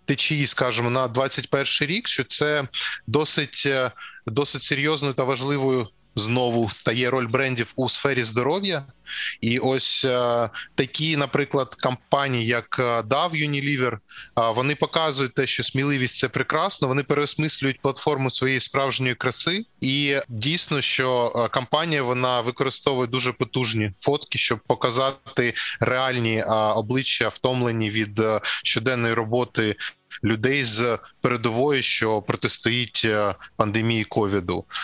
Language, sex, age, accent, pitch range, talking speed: Ukrainian, male, 20-39, native, 115-140 Hz, 110 wpm